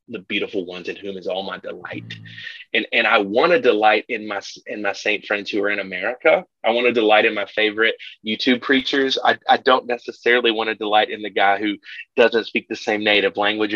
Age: 30-49